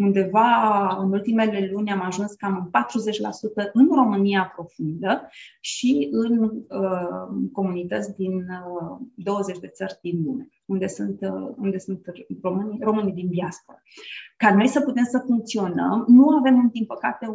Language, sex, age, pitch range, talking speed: Romanian, female, 20-39, 195-230 Hz, 140 wpm